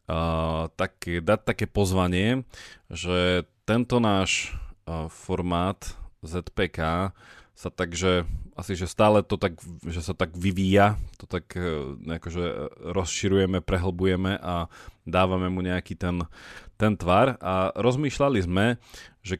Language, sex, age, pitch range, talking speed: Slovak, male, 30-49, 85-100 Hz, 120 wpm